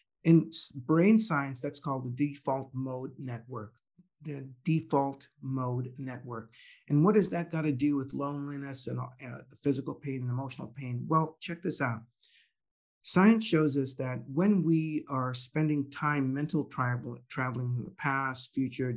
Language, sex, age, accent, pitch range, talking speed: English, male, 50-69, American, 125-155 Hz, 150 wpm